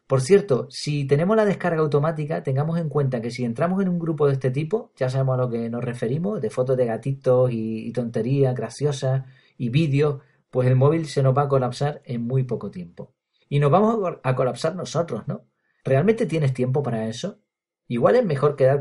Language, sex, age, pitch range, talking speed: Spanish, male, 40-59, 125-165 Hz, 205 wpm